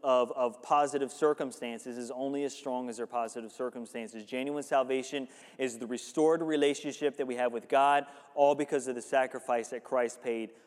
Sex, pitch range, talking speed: male, 130-170 Hz, 175 wpm